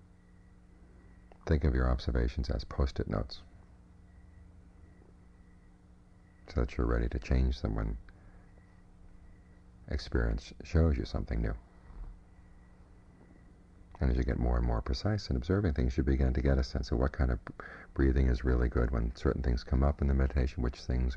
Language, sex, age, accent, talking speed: English, male, 50-69, American, 155 wpm